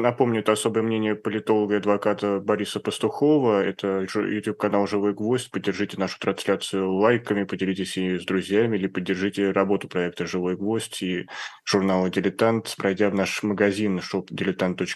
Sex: male